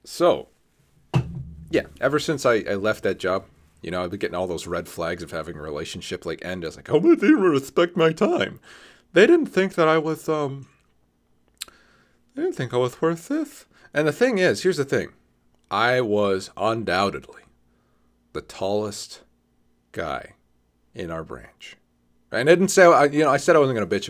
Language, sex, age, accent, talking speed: English, male, 30-49, American, 190 wpm